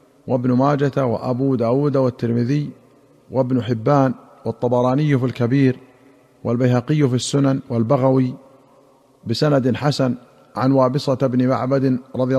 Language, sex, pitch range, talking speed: Arabic, male, 130-145 Hz, 100 wpm